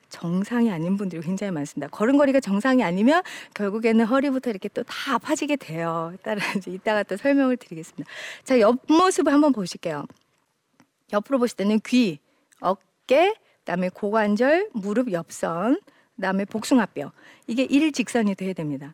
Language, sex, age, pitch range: Korean, female, 40-59, 180-255 Hz